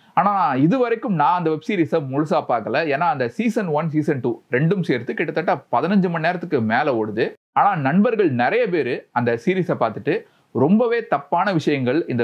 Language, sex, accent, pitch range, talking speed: Tamil, male, native, 130-195 Hz, 160 wpm